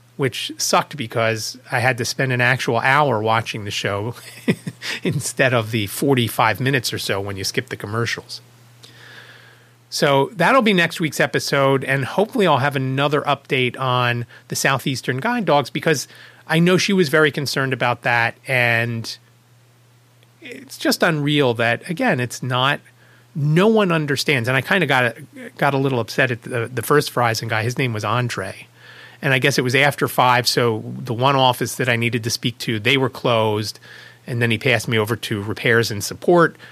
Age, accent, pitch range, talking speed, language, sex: 30-49, American, 115-140 Hz, 185 wpm, English, male